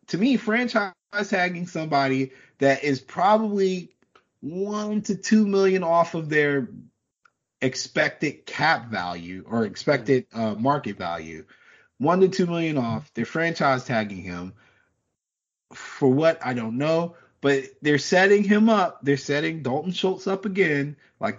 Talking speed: 135 wpm